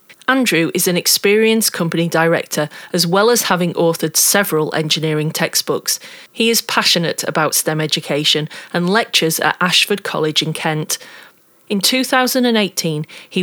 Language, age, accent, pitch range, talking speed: English, 40-59, British, 155-215 Hz, 135 wpm